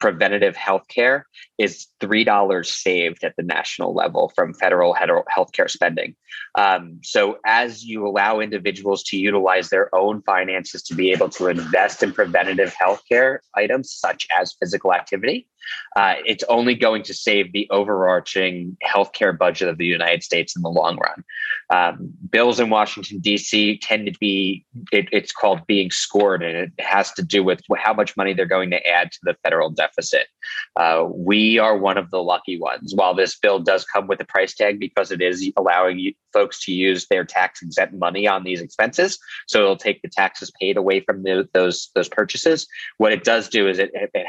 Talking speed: 190 wpm